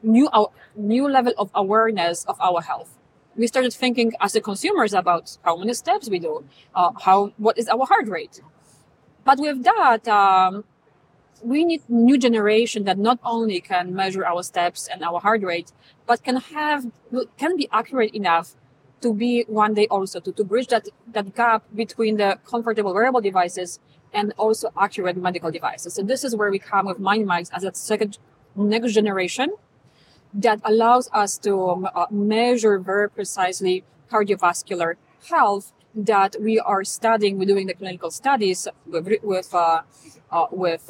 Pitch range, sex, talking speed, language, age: 185-230 Hz, female, 165 wpm, English, 30-49